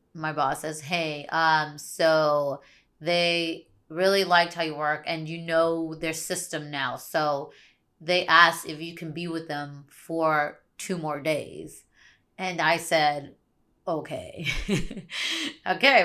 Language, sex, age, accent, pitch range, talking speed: English, female, 20-39, American, 150-175 Hz, 135 wpm